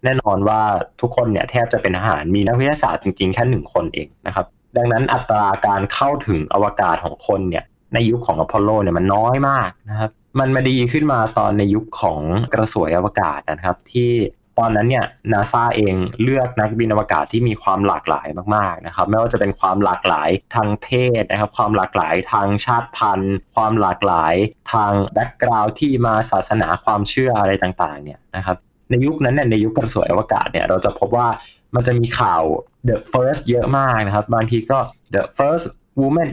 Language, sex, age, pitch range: Thai, male, 20-39, 100-125 Hz